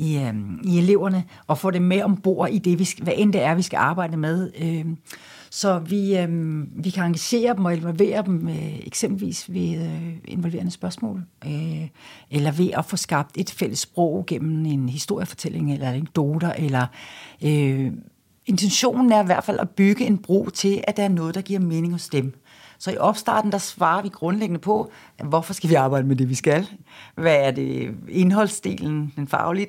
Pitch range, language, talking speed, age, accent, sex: 150-195 Hz, English, 180 wpm, 60-79, Danish, female